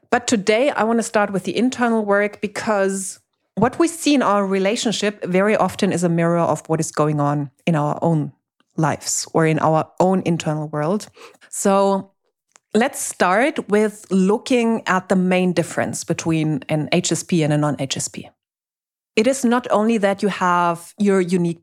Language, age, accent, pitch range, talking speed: English, 30-49, German, 170-225 Hz, 170 wpm